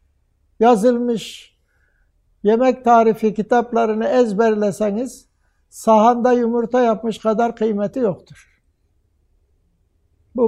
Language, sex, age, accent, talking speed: Turkish, male, 60-79, native, 70 wpm